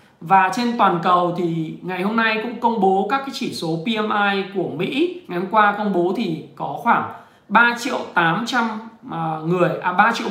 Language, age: Vietnamese, 20-39